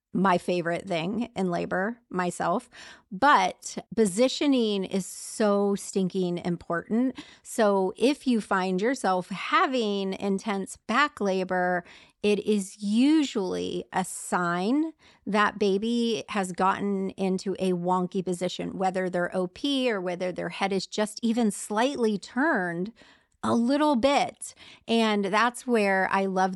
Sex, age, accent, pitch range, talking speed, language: female, 30-49, American, 185-225 Hz, 120 wpm, English